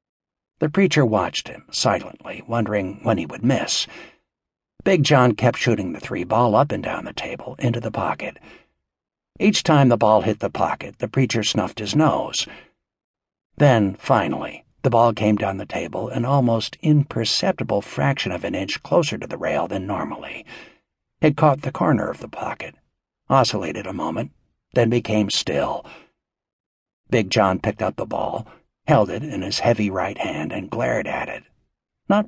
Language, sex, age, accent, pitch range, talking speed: English, male, 60-79, American, 105-145 Hz, 165 wpm